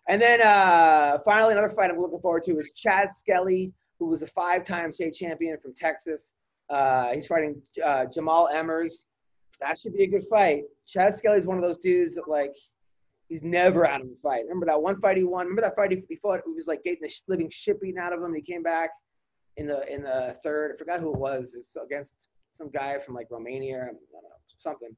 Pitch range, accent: 150-200 Hz, American